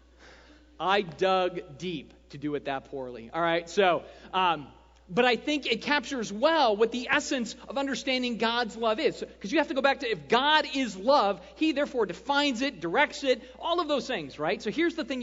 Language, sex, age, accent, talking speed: English, male, 40-59, American, 205 wpm